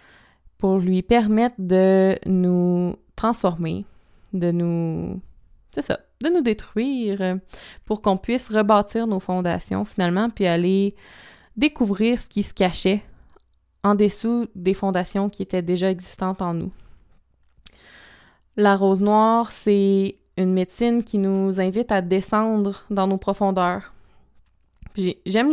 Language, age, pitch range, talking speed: French, 20-39, 185-215 Hz, 125 wpm